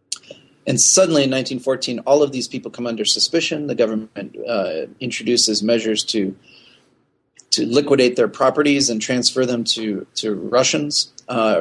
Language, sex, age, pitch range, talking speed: English, male, 30-49, 110-130 Hz, 145 wpm